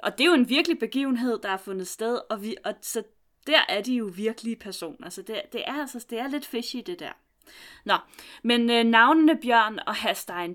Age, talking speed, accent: 30-49, 220 wpm, native